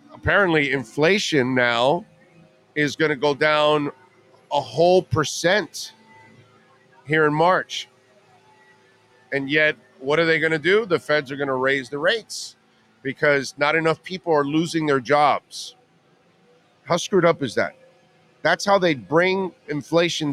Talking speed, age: 140 wpm, 40-59